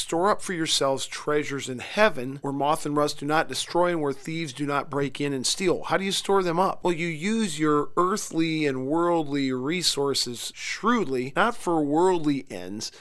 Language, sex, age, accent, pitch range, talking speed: English, male, 40-59, American, 140-165 Hz, 195 wpm